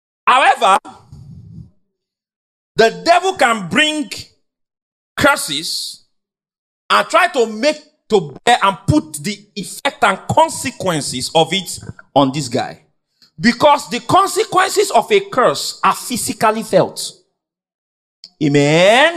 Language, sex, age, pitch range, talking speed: English, male, 40-59, 200-310 Hz, 100 wpm